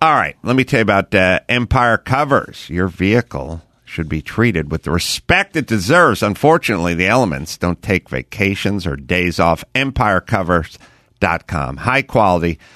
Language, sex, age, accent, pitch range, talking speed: English, male, 50-69, American, 85-120 Hz, 145 wpm